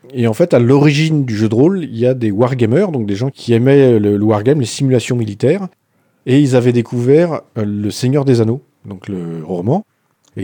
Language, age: French, 40-59